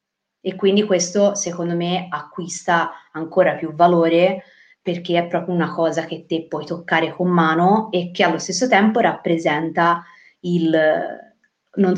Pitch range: 170-195 Hz